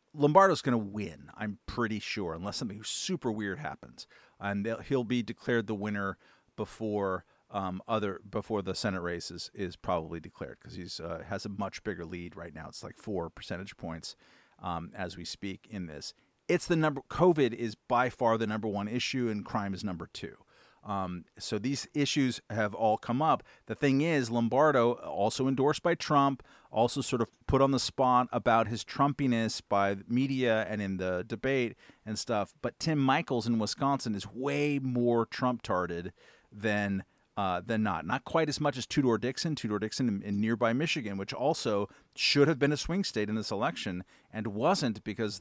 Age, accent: 40-59, American